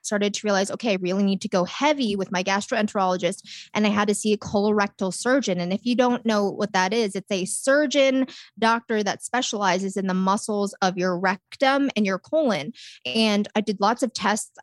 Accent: American